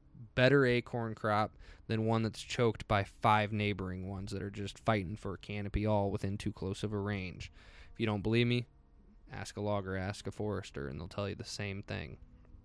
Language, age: English, 20-39